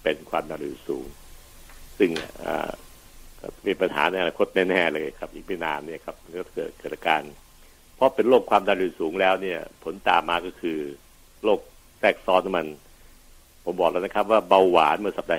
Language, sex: Thai, male